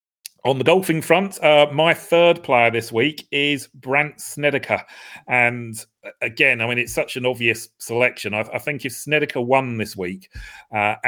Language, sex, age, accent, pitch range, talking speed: English, male, 40-59, British, 100-125 Hz, 170 wpm